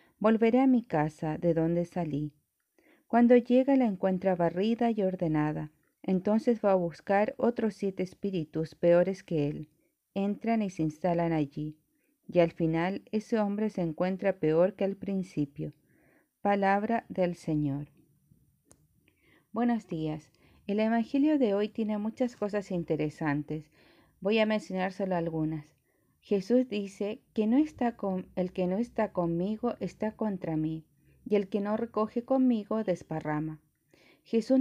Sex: female